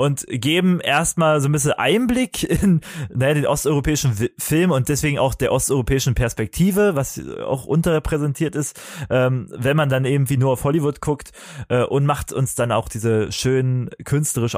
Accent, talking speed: German, 165 wpm